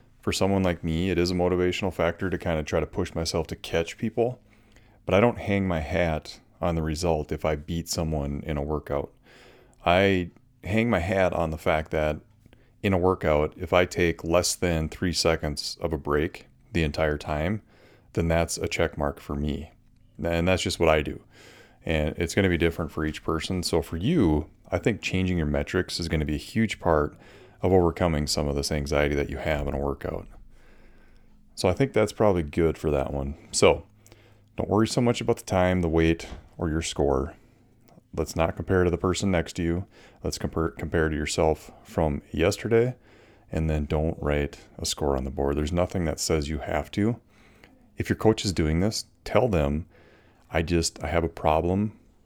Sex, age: male, 30-49